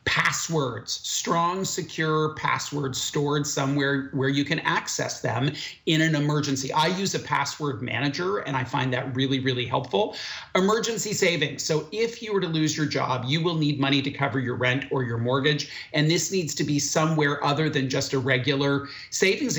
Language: English